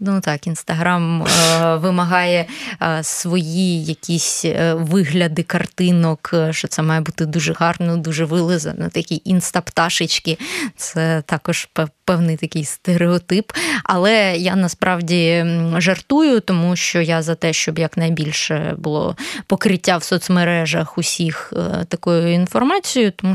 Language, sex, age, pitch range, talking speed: Ukrainian, female, 20-39, 165-195 Hz, 115 wpm